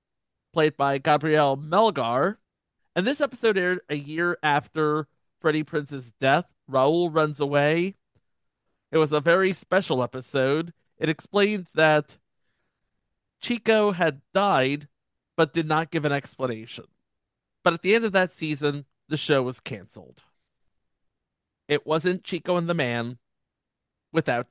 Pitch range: 135-175 Hz